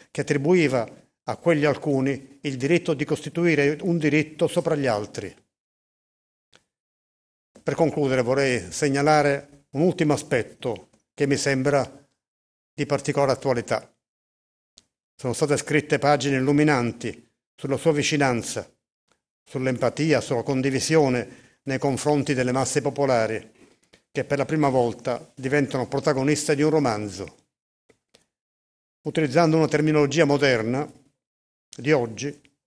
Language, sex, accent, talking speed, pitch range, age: Italian, male, native, 110 wpm, 130-150 Hz, 50-69